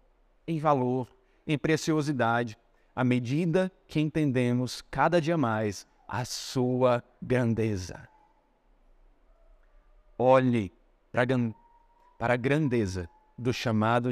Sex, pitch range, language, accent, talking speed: male, 115-170 Hz, Portuguese, Brazilian, 85 wpm